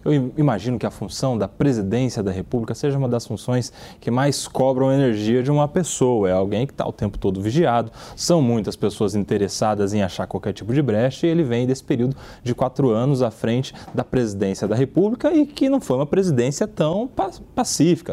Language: Portuguese